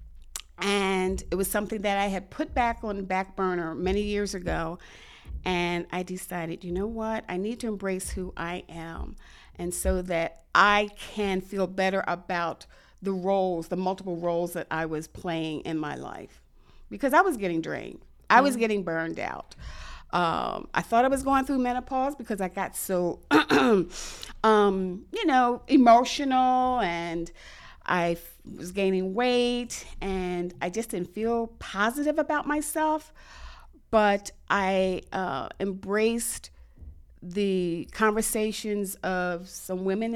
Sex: female